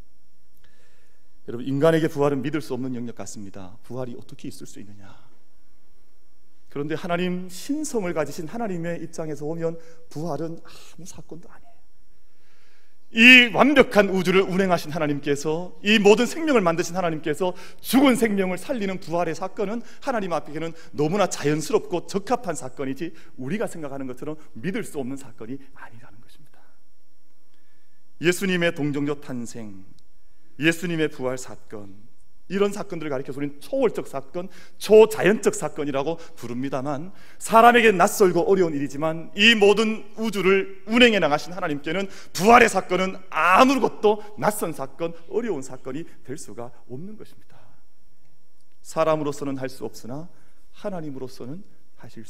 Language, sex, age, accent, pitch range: Korean, male, 40-59, native, 130-190 Hz